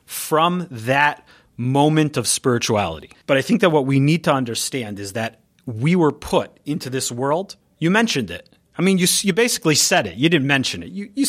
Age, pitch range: 30-49, 125-170 Hz